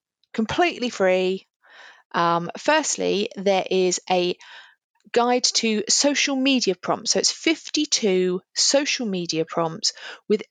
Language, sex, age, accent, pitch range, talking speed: English, female, 40-59, British, 190-245 Hz, 110 wpm